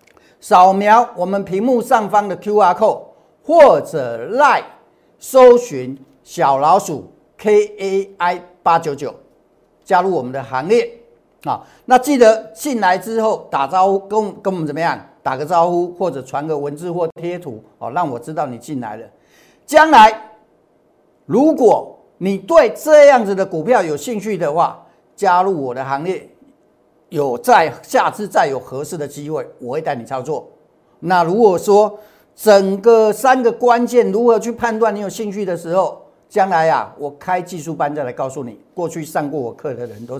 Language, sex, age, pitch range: Chinese, male, 50-69, 160-225 Hz